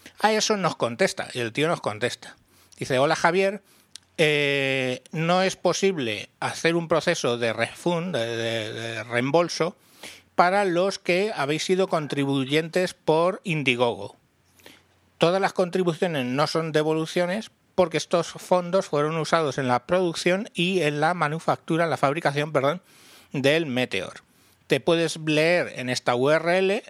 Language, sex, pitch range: Spanish, male, 135-180 Hz